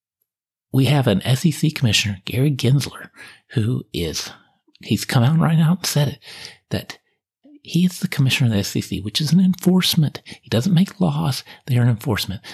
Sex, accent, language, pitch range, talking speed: male, American, English, 95-145 Hz, 170 wpm